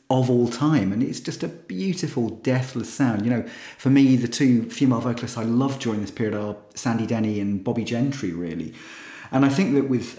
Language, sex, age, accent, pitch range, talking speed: English, male, 40-59, British, 110-135 Hz, 205 wpm